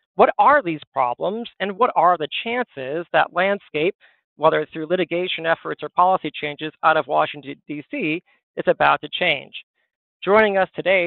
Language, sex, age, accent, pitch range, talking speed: English, male, 40-59, American, 145-185 Hz, 165 wpm